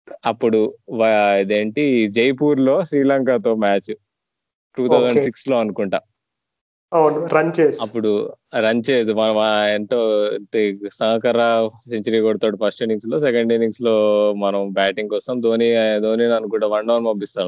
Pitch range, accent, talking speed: 110-145 Hz, native, 120 wpm